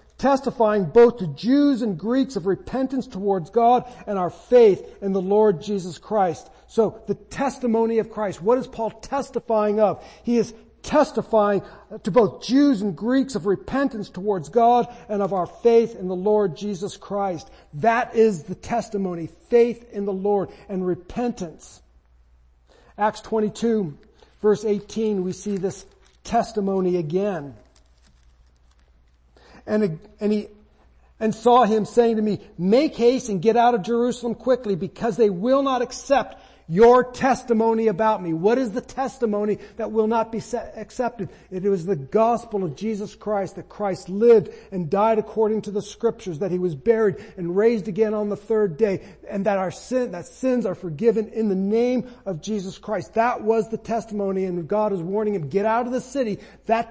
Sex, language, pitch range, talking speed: male, English, 195-235 Hz, 170 wpm